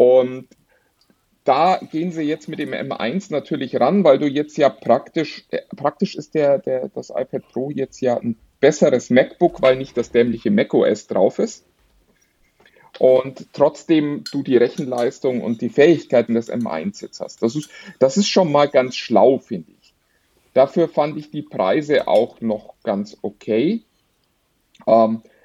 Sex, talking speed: male, 150 wpm